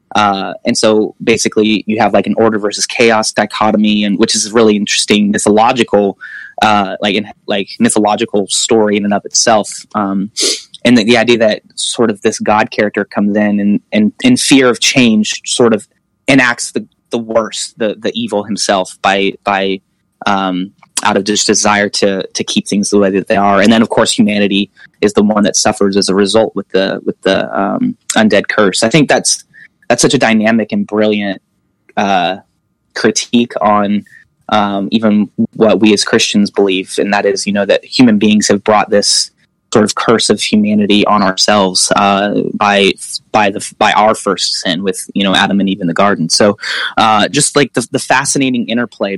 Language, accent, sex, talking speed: English, American, male, 190 wpm